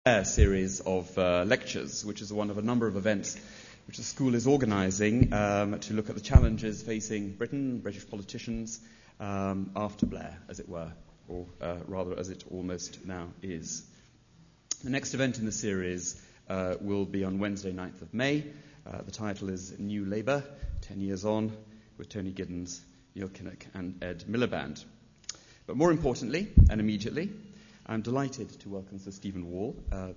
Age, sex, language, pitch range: 30-49, male, English, 95-115 Hz